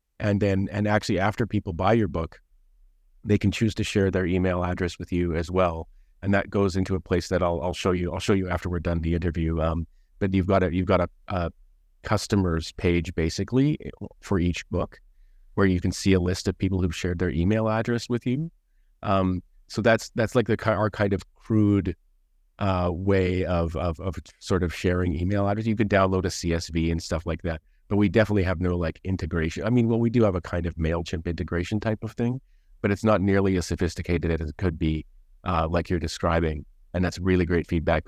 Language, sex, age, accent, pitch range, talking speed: English, male, 30-49, American, 85-100 Hz, 220 wpm